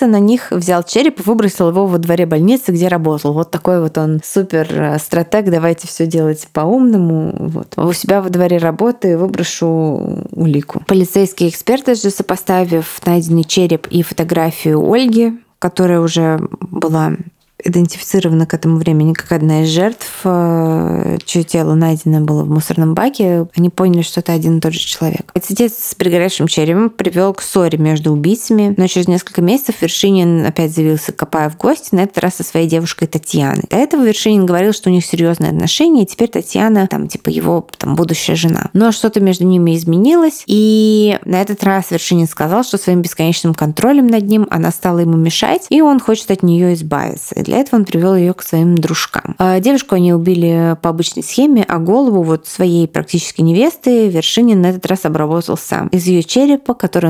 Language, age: Russian, 20-39